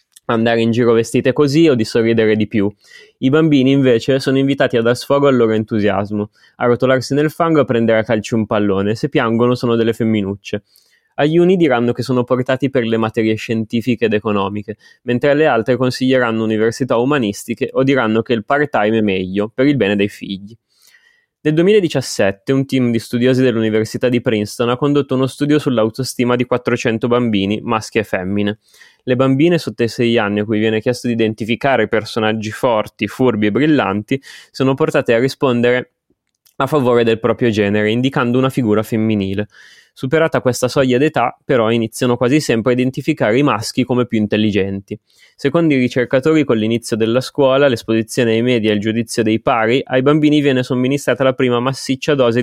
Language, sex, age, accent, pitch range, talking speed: Italian, male, 20-39, native, 110-135 Hz, 175 wpm